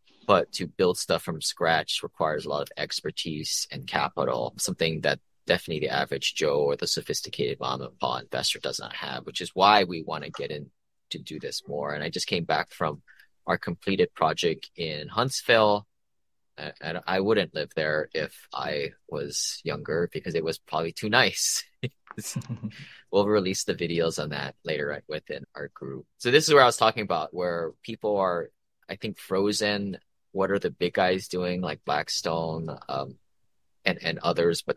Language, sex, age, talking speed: English, male, 20-39, 180 wpm